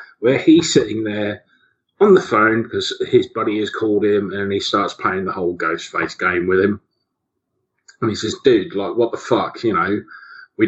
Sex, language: male, English